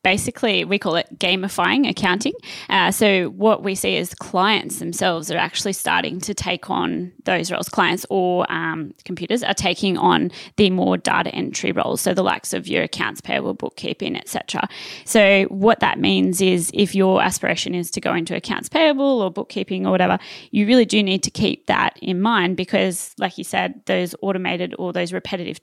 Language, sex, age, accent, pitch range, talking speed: English, female, 20-39, Australian, 180-210 Hz, 185 wpm